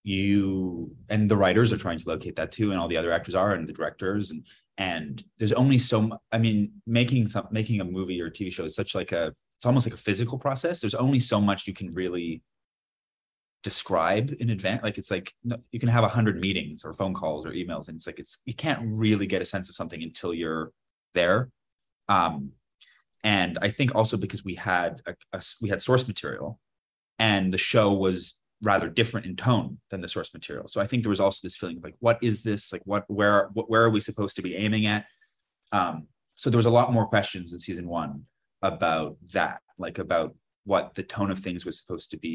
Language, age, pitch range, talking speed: English, 30-49, 95-115 Hz, 225 wpm